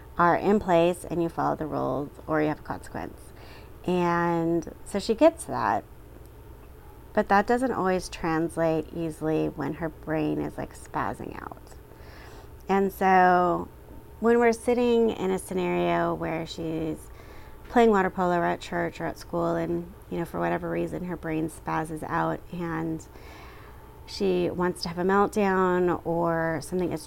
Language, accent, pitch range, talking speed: English, American, 160-185 Hz, 155 wpm